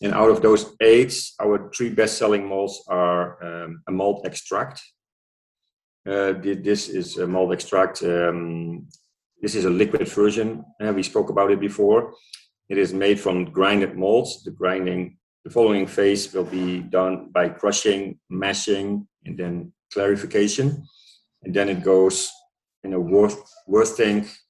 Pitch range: 90-105 Hz